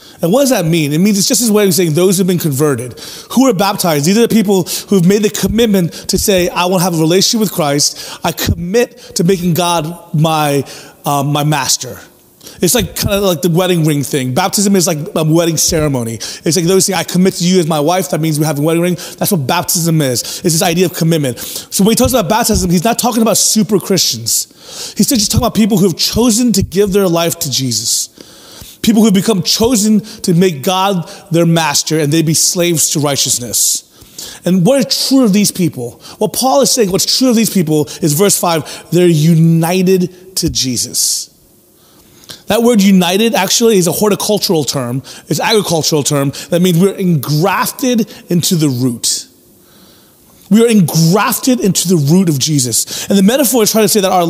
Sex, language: male, English